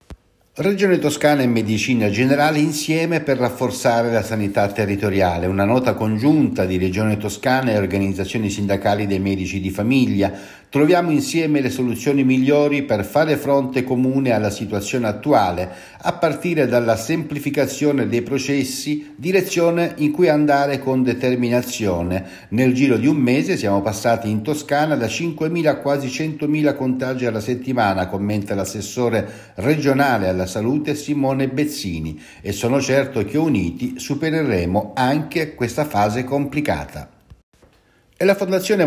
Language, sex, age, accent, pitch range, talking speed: Italian, male, 60-79, native, 100-140 Hz, 130 wpm